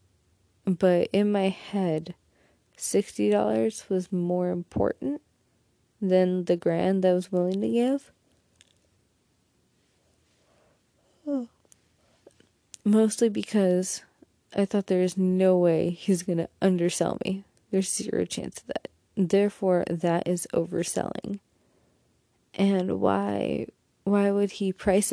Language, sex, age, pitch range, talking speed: English, female, 20-39, 175-200 Hz, 110 wpm